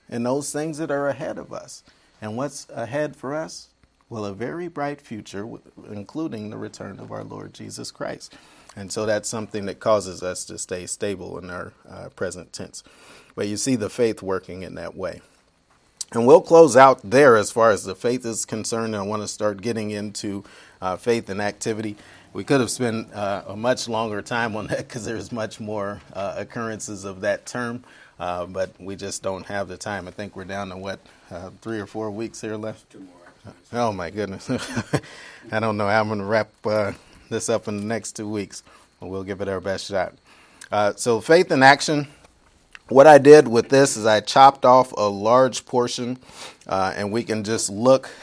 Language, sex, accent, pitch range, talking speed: English, male, American, 100-120 Hz, 200 wpm